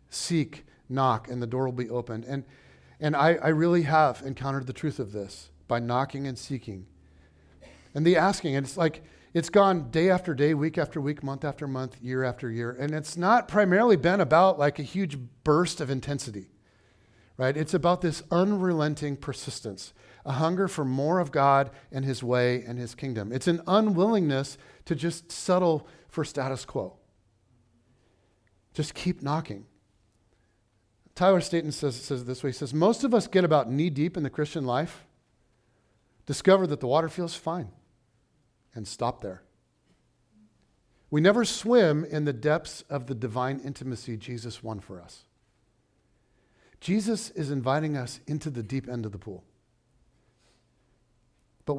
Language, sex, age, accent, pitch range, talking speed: English, male, 40-59, American, 120-160 Hz, 160 wpm